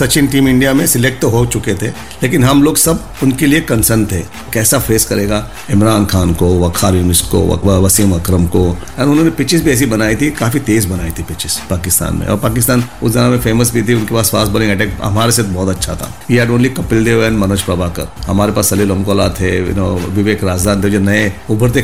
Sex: male